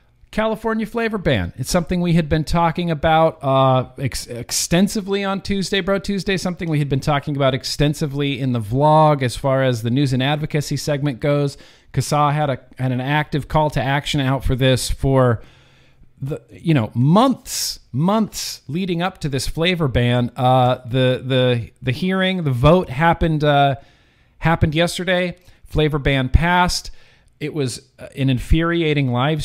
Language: English